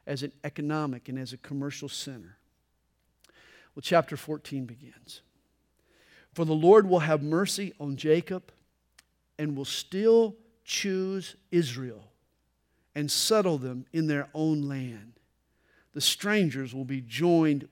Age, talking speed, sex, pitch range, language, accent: 50-69, 125 wpm, male, 140-205 Hz, English, American